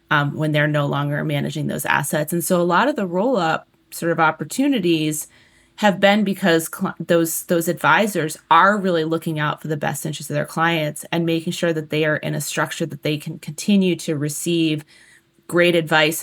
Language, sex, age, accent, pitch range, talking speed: English, female, 30-49, American, 155-180 Hz, 195 wpm